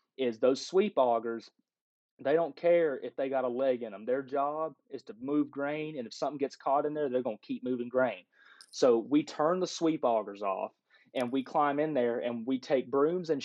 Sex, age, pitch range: male, 30-49, 130-160 Hz